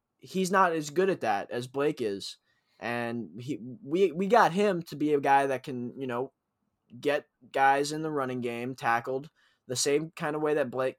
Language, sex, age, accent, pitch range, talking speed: English, male, 20-39, American, 120-155 Hz, 200 wpm